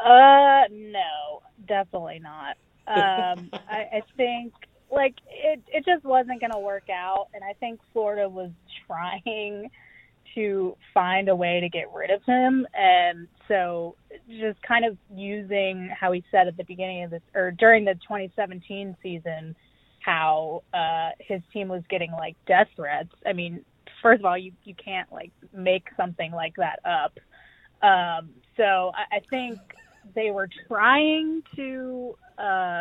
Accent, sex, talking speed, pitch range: American, female, 155 wpm, 175-215 Hz